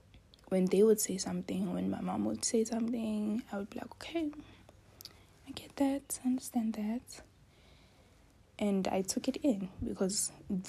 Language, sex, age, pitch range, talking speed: English, female, 20-39, 175-230 Hz, 155 wpm